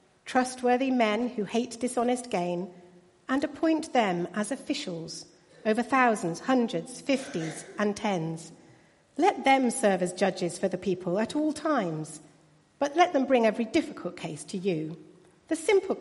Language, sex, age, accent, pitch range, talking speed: English, female, 50-69, British, 175-260 Hz, 145 wpm